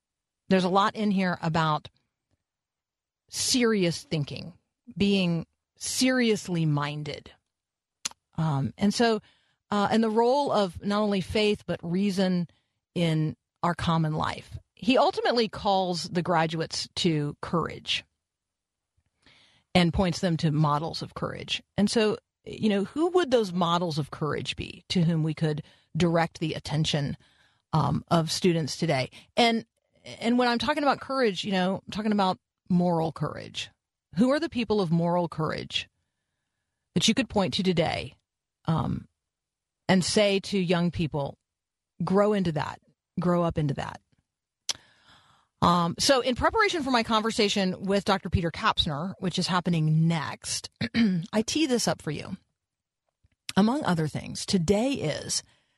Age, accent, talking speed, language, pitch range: 50-69, American, 140 wpm, English, 160-210 Hz